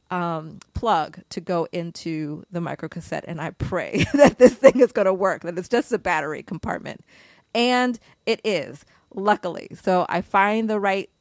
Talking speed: 175 wpm